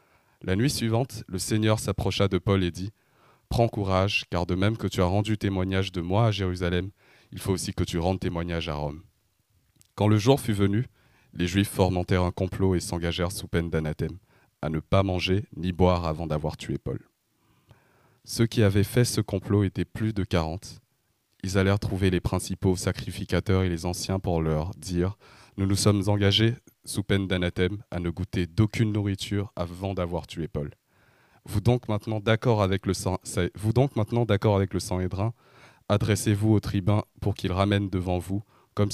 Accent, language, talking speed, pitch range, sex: French, French, 180 wpm, 90-110 Hz, male